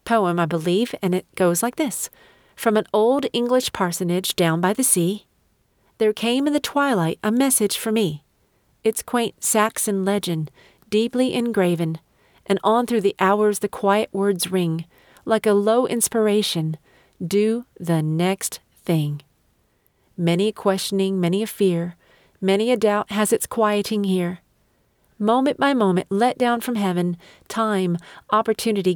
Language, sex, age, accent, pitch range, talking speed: English, female, 40-59, American, 175-230 Hz, 145 wpm